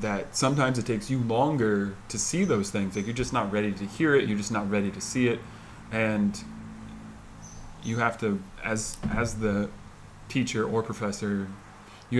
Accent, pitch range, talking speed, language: American, 100-110 Hz, 175 wpm, English